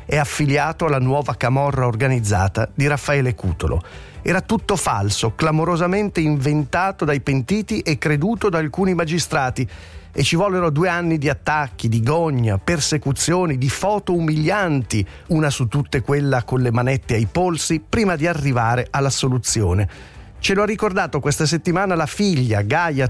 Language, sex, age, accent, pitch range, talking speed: Italian, male, 40-59, native, 120-160 Hz, 150 wpm